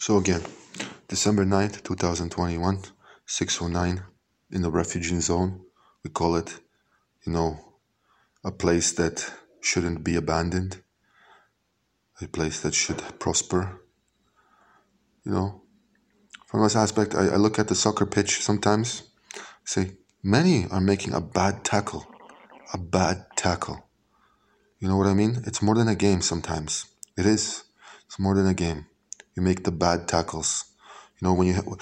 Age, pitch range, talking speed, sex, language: 20-39, 85-105 Hz, 145 wpm, male, Hebrew